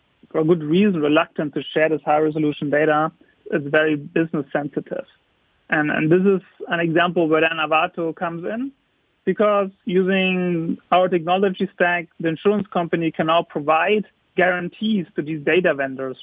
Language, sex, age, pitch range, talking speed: English, male, 40-59, 155-180 Hz, 145 wpm